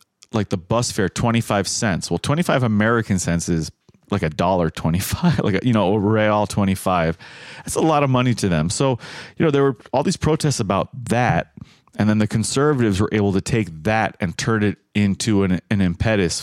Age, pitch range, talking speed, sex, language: 30-49, 90-115 Hz, 195 wpm, male, English